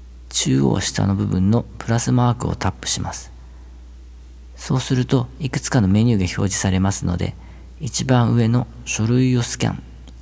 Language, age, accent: Japanese, 50-69, native